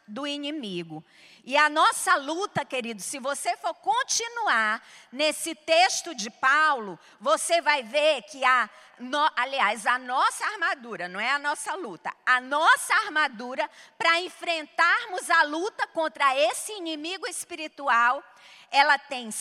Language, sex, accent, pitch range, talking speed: Portuguese, female, Brazilian, 250-330 Hz, 130 wpm